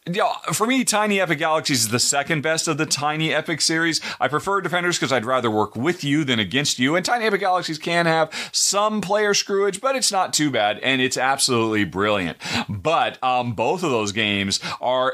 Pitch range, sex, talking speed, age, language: 120-170 Hz, male, 200 wpm, 30-49, English